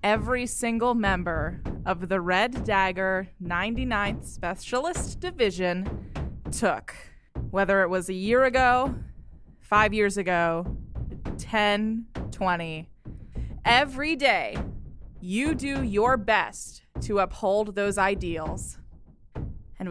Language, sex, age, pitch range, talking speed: English, female, 20-39, 190-230 Hz, 100 wpm